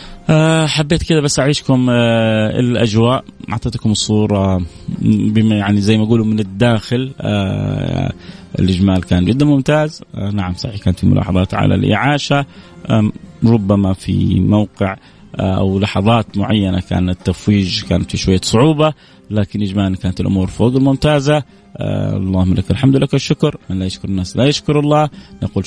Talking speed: 130 wpm